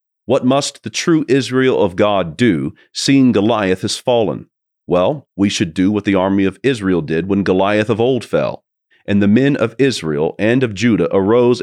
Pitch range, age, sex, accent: 95-120 Hz, 40-59, male, American